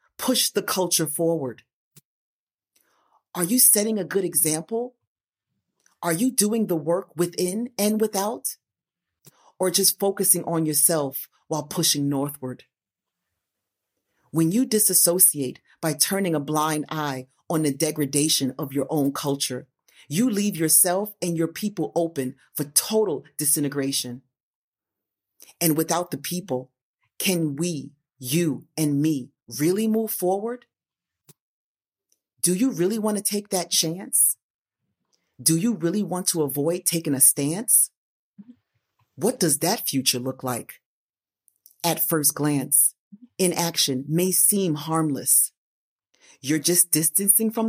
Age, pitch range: 40-59, 145-190 Hz